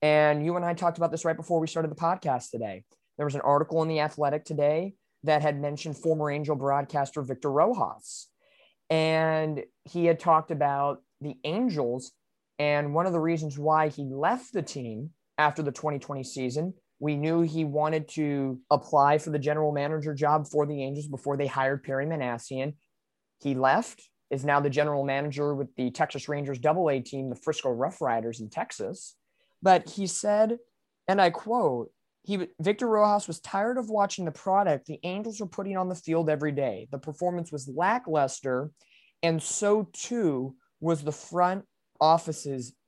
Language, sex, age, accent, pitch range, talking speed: English, male, 20-39, American, 145-175 Hz, 175 wpm